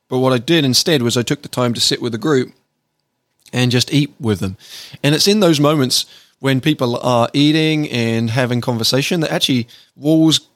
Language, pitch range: English, 110-140 Hz